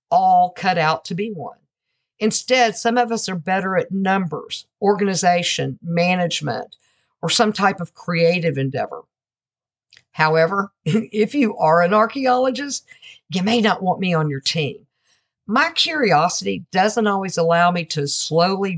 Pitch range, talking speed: 165-220 Hz, 140 wpm